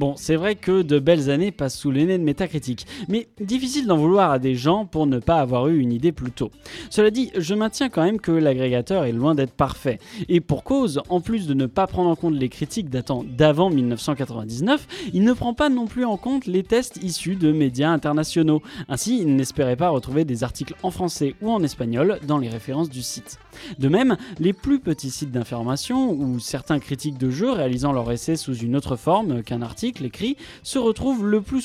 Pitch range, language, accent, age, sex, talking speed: 130-190 Hz, French, French, 20-39, male, 215 wpm